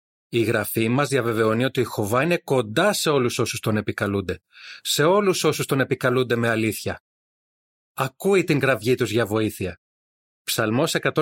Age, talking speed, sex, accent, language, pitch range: 30-49, 150 wpm, male, native, Greek, 105-155 Hz